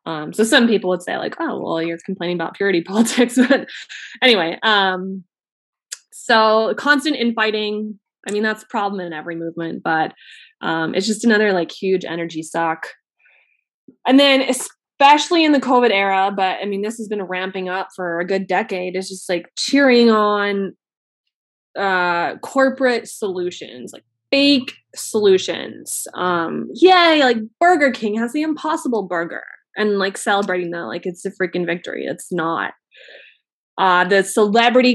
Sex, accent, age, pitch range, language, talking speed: female, American, 20-39, 185-235 Hz, English, 155 wpm